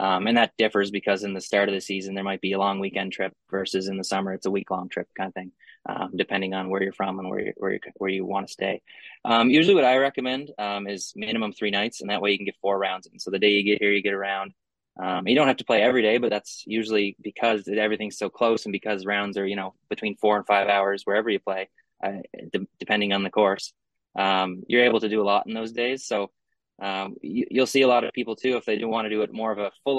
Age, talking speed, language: 20-39, 270 wpm, English